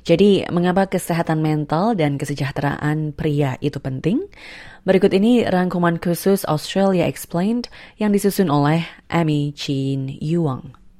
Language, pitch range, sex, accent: Indonesian, 150-195 Hz, female, native